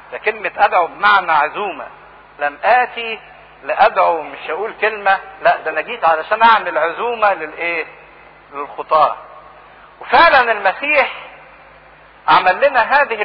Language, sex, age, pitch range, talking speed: English, male, 50-69, 180-235 Hz, 110 wpm